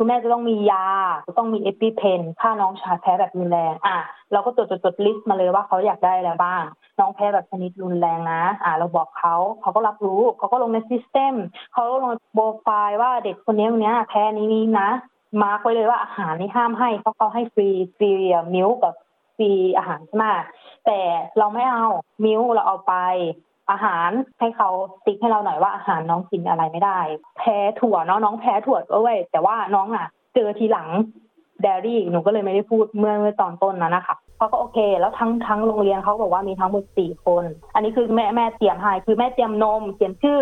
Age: 20-39